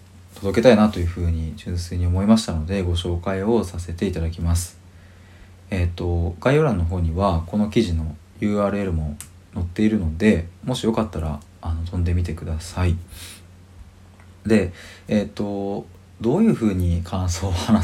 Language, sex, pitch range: Japanese, male, 85-105 Hz